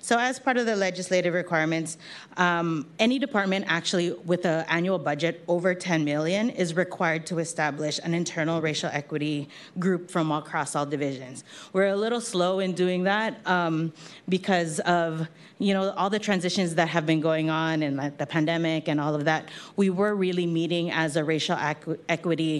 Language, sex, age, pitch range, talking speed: English, female, 30-49, 160-190 Hz, 185 wpm